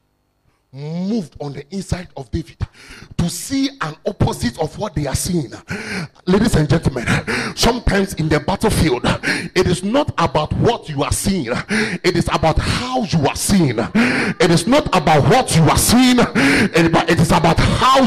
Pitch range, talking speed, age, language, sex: 160-225 Hz, 165 wpm, 30-49, English, male